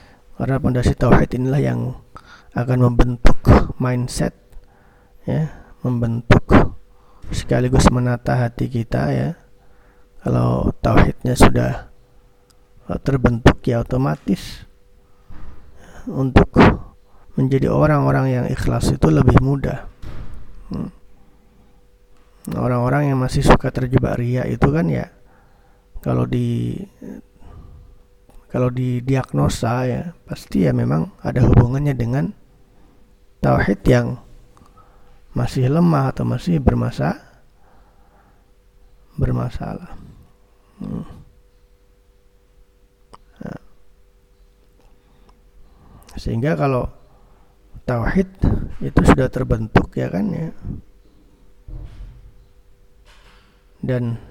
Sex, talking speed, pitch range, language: male, 75 wpm, 100-125 Hz, Indonesian